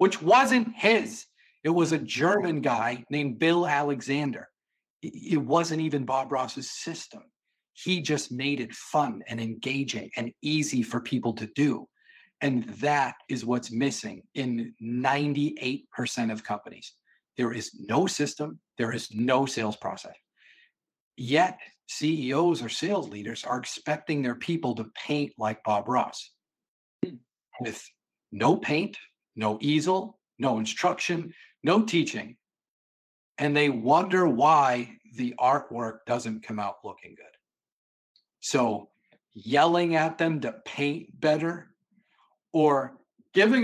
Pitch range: 125-170 Hz